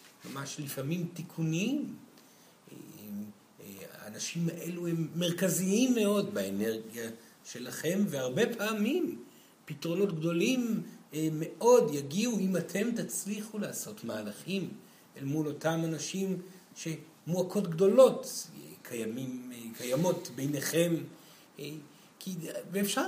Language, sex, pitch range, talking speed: Hebrew, male, 150-210 Hz, 80 wpm